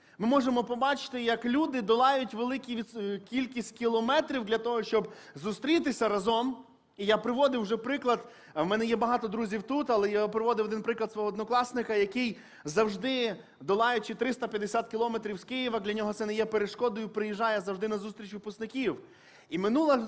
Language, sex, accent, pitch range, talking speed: Ukrainian, male, native, 205-245 Hz, 155 wpm